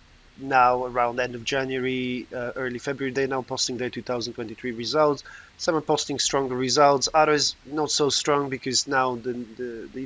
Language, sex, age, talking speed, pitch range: English, male, 30-49, 175 wpm, 125-150 Hz